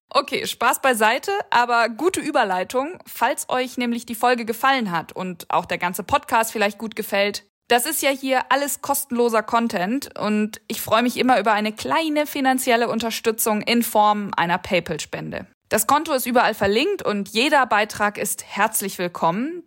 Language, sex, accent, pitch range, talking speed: German, female, German, 210-275 Hz, 160 wpm